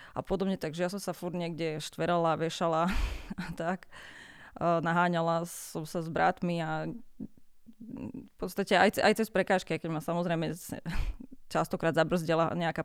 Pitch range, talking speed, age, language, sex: 165-190 Hz, 140 wpm, 20-39, Slovak, female